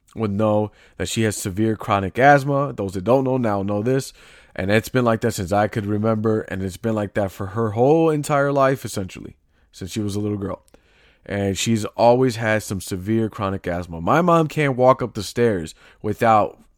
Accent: American